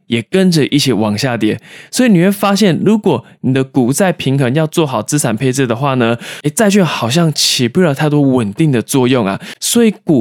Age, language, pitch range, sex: 20-39, Chinese, 125-175 Hz, male